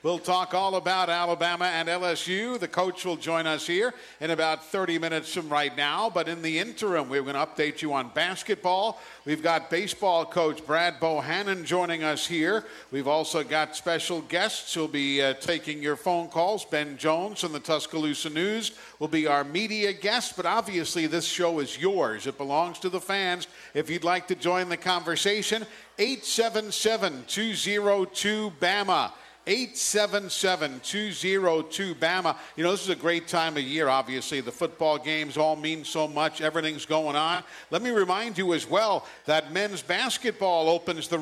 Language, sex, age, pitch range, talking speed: English, male, 50-69, 160-195 Hz, 175 wpm